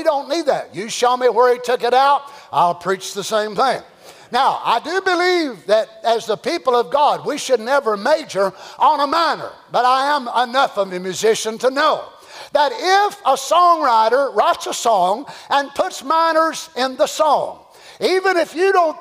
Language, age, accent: English, 50-69, American